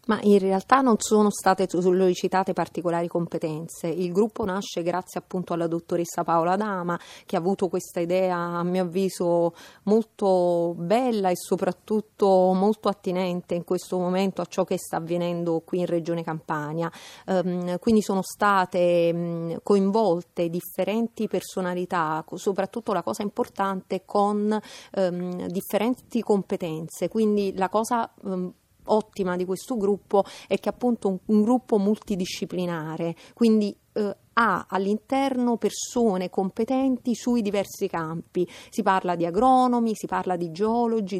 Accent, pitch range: native, 175-215 Hz